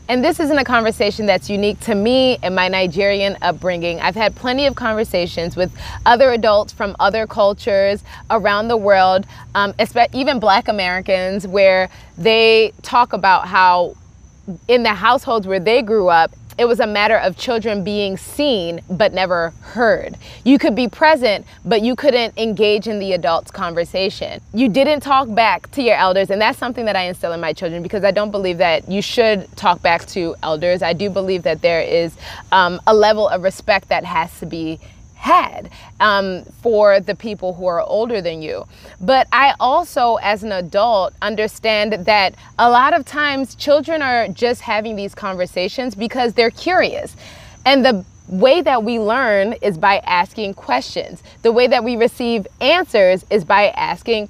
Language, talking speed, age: English, 175 wpm, 20-39